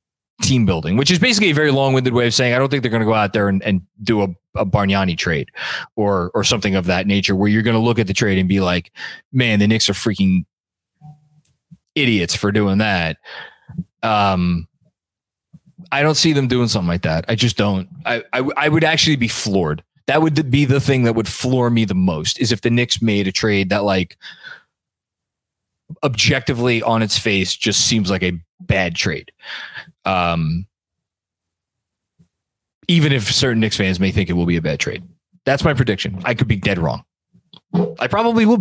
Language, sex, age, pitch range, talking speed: English, male, 20-39, 100-140 Hz, 200 wpm